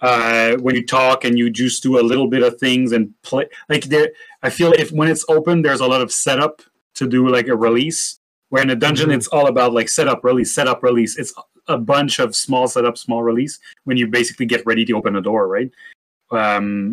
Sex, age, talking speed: male, 30-49, 225 wpm